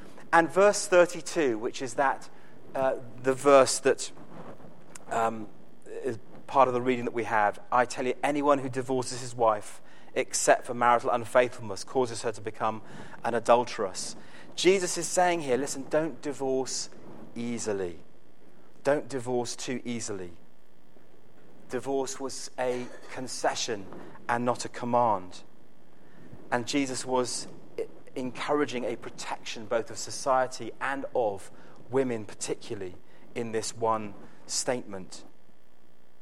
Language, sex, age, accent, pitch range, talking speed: English, male, 30-49, British, 110-140 Hz, 125 wpm